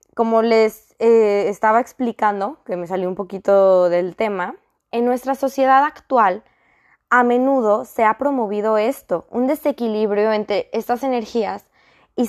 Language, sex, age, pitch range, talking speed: Spanish, female, 20-39, 195-240 Hz, 135 wpm